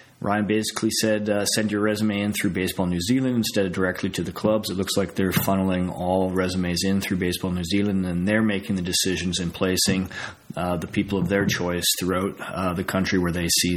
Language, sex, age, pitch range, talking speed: English, male, 30-49, 95-120 Hz, 220 wpm